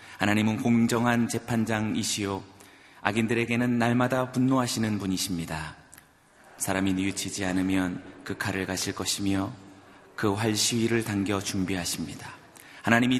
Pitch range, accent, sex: 95-115 Hz, native, male